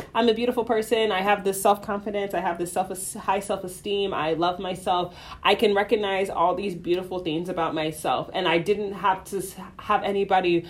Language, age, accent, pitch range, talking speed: English, 20-39, American, 180-220 Hz, 195 wpm